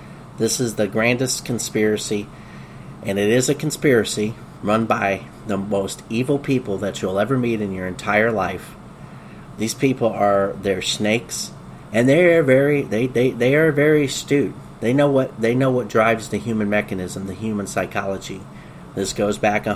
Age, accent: 30-49, American